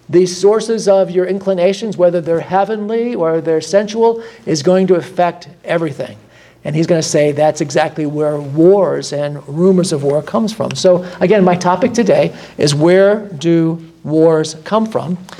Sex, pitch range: male, 165-205 Hz